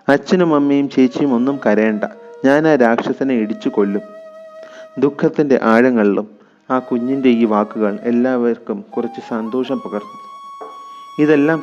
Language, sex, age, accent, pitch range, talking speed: Malayalam, male, 30-49, native, 110-140 Hz, 110 wpm